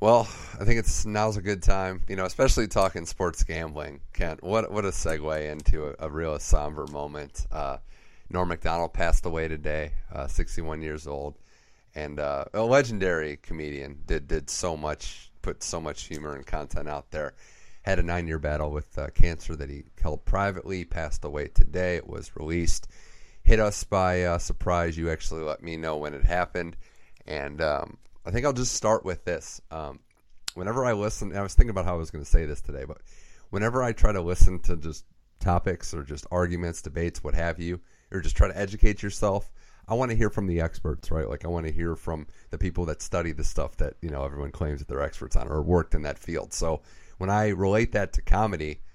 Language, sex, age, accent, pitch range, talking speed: English, male, 30-49, American, 75-95 Hz, 210 wpm